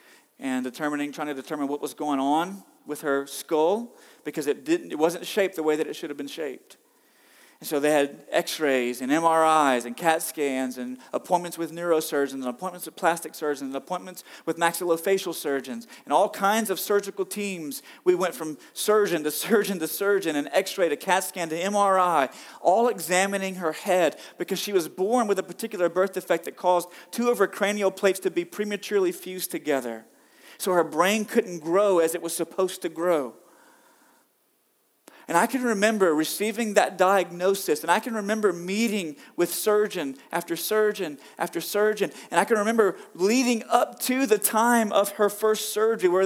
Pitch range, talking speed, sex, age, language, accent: 165-210 Hz, 180 wpm, male, 40-59, English, American